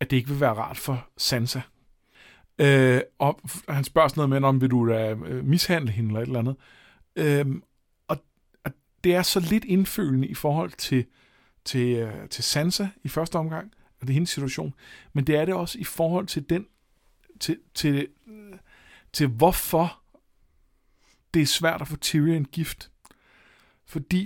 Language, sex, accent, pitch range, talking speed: Danish, male, native, 130-170 Hz, 165 wpm